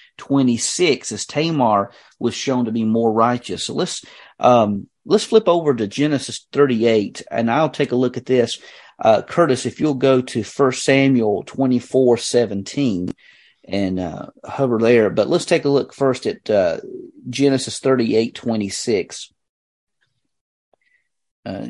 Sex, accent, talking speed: male, American, 140 wpm